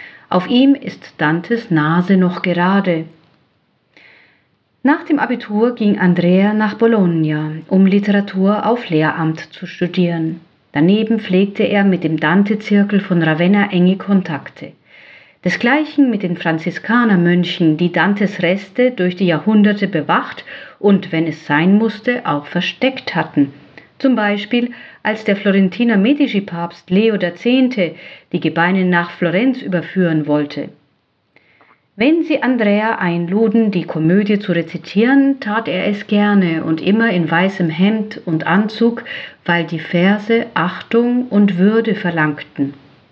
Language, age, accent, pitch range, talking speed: German, 50-69, German, 170-220 Hz, 125 wpm